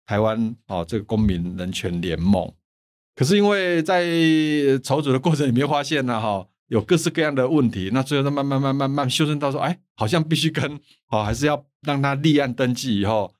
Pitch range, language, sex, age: 105-145 Hz, Chinese, male, 60-79